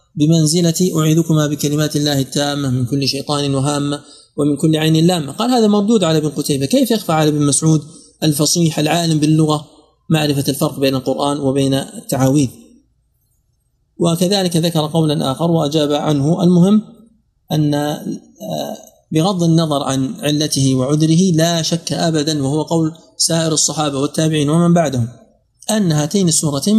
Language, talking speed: Arabic, 130 wpm